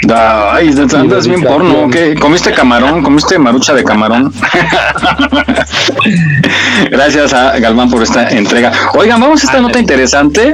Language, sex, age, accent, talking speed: Spanish, male, 40-59, Mexican, 130 wpm